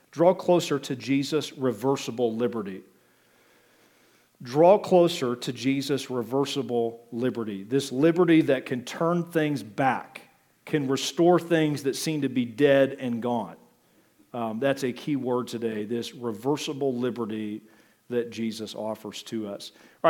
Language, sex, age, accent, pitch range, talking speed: English, male, 40-59, American, 120-150 Hz, 130 wpm